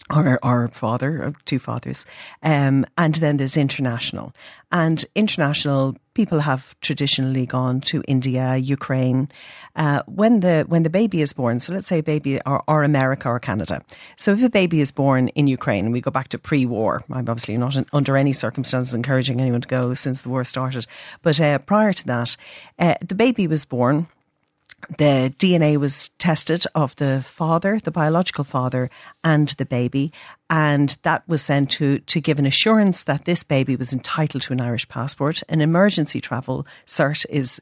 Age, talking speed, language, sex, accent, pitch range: 50-69, 175 wpm, English, female, Irish, 130-160 Hz